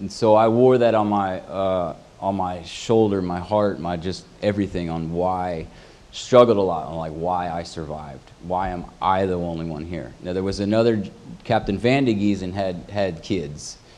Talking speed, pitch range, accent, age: 195 wpm, 85-100 Hz, American, 30-49